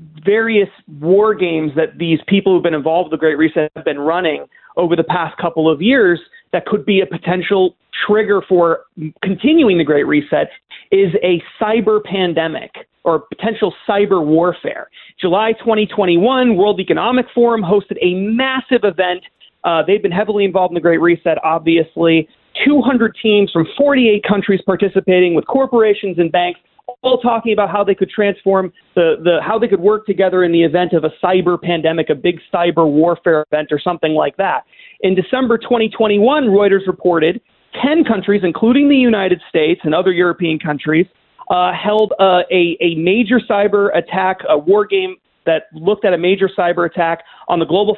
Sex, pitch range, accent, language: male, 170-215 Hz, American, English